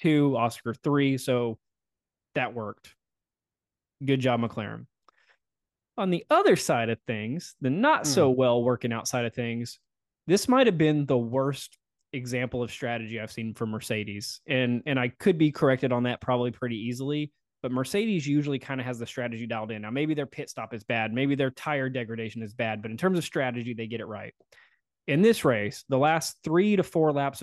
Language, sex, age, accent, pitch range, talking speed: English, male, 20-39, American, 120-150 Hz, 190 wpm